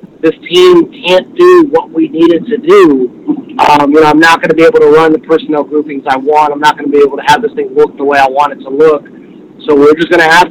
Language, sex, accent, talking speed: English, male, American, 280 wpm